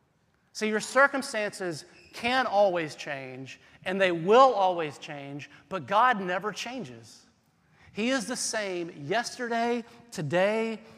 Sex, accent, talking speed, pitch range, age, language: male, American, 115 wpm, 150-200 Hz, 30-49, English